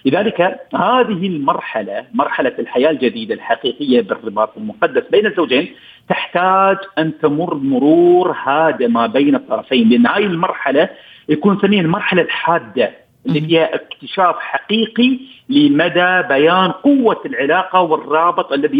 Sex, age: male, 50-69